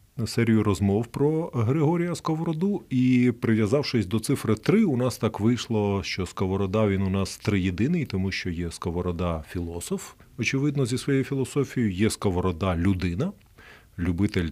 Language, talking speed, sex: Ukrainian, 140 wpm, male